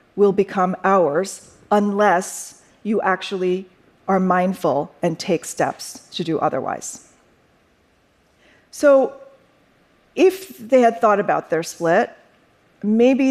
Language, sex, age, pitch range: Korean, female, 40-59, 175-215 Hz